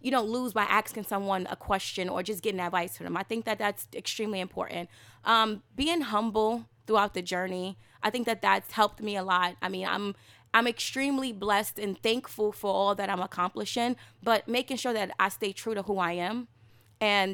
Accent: American